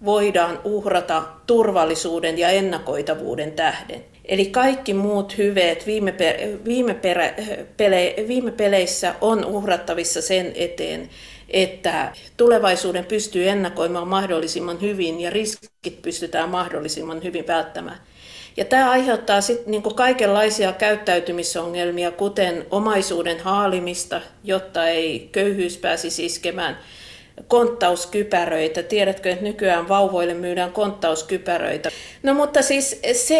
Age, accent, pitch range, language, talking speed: 50-69, native, 175-215 Hz, Finnish, 105 wpm